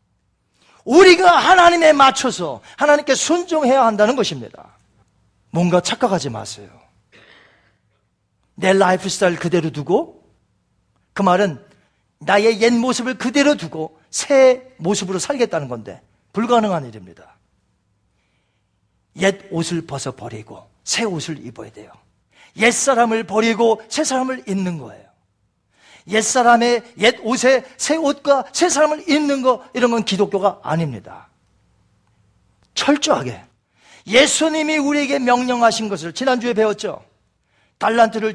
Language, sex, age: Korean, male, 40-59